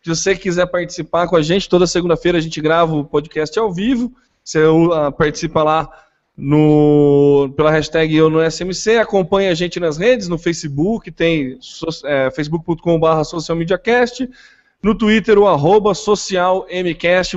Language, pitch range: Portuguese, 155-185 Hz